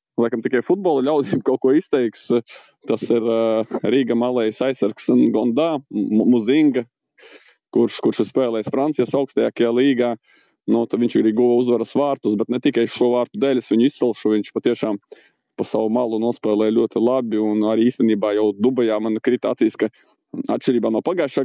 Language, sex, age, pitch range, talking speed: English, male, 20-39, 110-125 Hz, 155 wpm